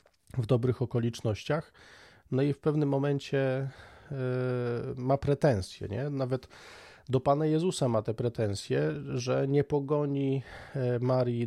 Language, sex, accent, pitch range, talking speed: Polish, male, native, 115-140 Hz, 120 wpm